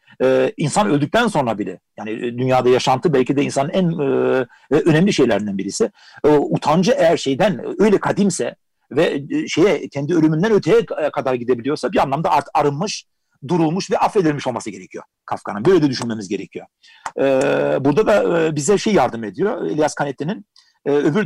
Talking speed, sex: 140 wpm, male